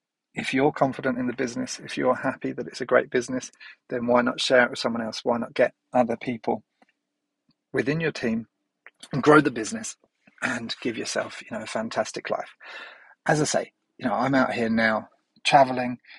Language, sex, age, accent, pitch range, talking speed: English, male, 30-49, British, 115-140 Hz, 195 wpm